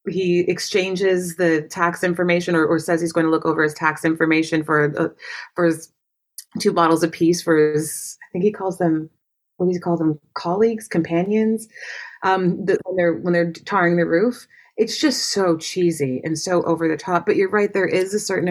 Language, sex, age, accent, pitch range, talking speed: English, female, 30-49, American, 150-185 Hz, 200 wpm